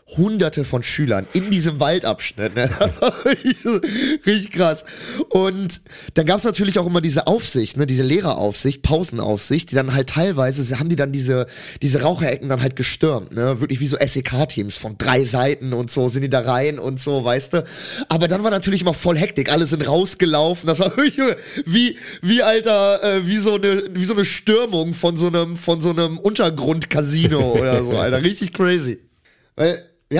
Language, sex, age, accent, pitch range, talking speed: German, male, 30-49, German, 130-190 Hz, 175 wpm